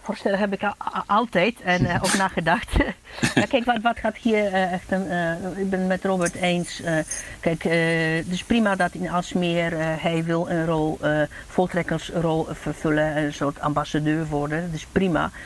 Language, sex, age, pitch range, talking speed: Dutch, female, 50-69, 165-190 Hz, 190 wpm